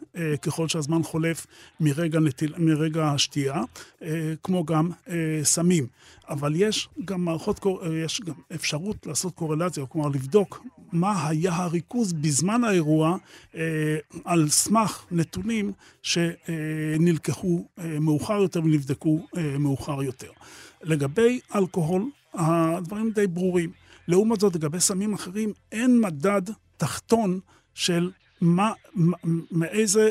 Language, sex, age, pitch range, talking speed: Hebrew, male, 40-59, 160-190 Hz, 100 wpm